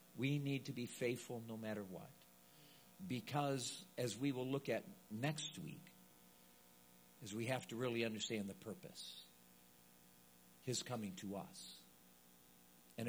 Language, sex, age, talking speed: English, male, 50-69, 135 wpm